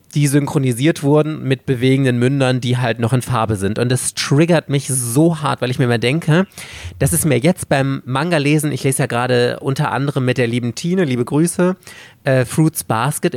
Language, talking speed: German, 200 wpm